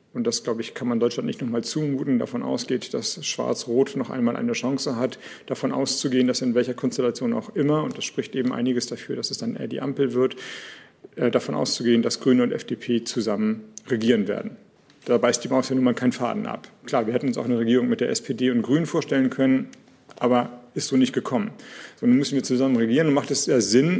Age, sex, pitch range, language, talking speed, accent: 40-59, male, 125-160 Hz, German, 225 wpm, German